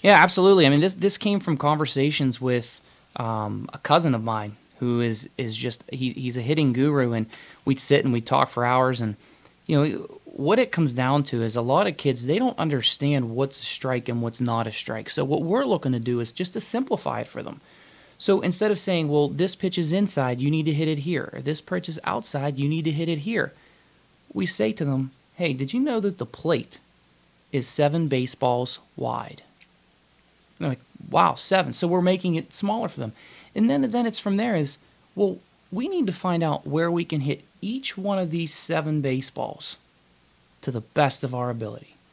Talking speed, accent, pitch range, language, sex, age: 210 wpm, American, 130-180 Hz, English, male, 20-39